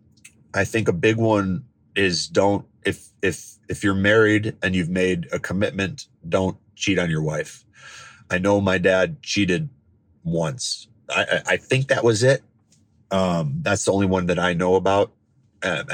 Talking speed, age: 165 wpm, 30-49